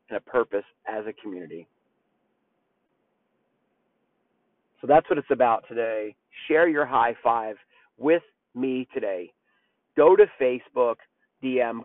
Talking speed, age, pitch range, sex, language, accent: 115 wpm, 40-59, 140-175 Hz, male, English, American